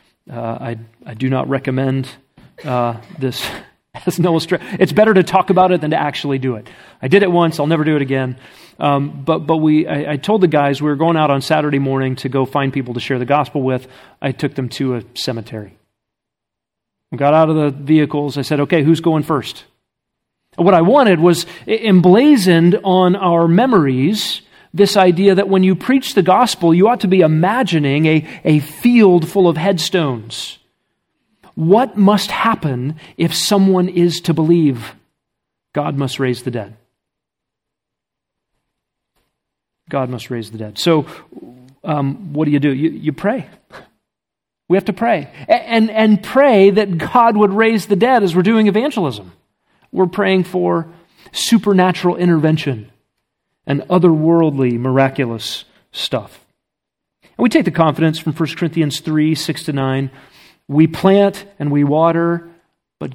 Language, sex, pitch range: English, male, 135-185 Hz